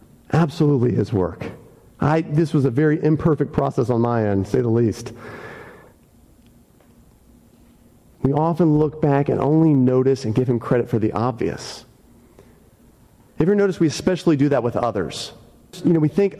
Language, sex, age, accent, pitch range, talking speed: English, male, 40-59, American, 115-155 Hz, 165 wpm